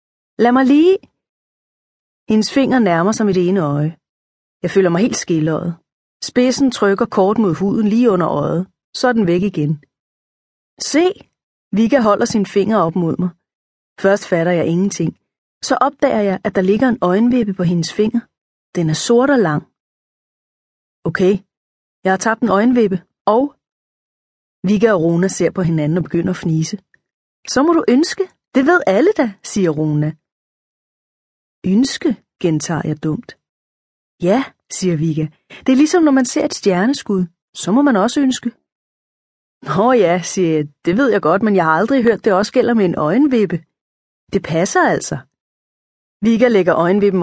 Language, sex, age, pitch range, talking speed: Danish, female, 30-49, 170-240 Hz, 165 wpm